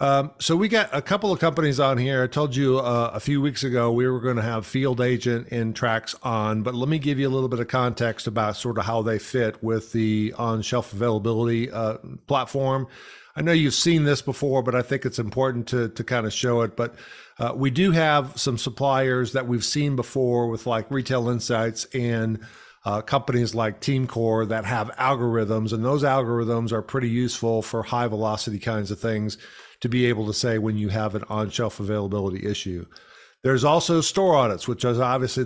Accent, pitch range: American, 110-130 Hz